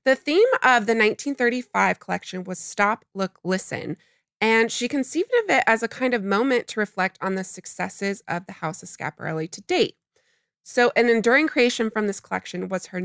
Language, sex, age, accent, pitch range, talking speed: English, female, 20-39, American, 180-245 Hz, 190 wpm